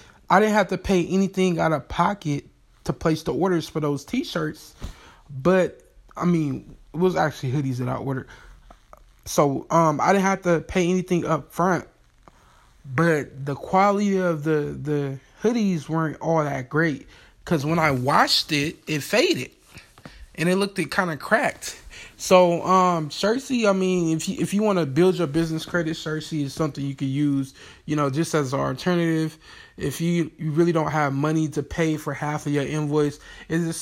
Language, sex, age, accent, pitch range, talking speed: English, male, 20-39, American, 145-180 Hz, 185 wpm